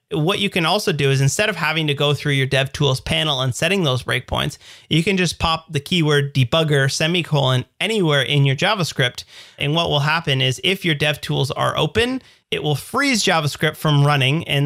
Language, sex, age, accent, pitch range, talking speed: English, male, 30-49, American, 135-165 Hz, 200 wpm